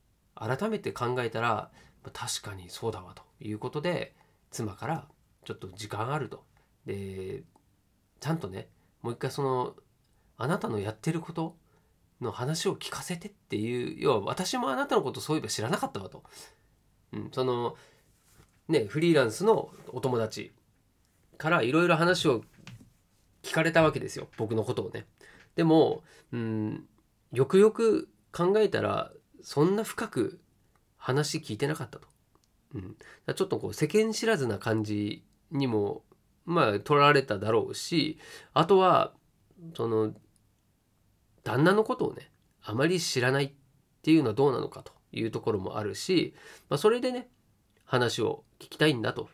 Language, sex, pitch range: Japanese, male, 110-165 Hz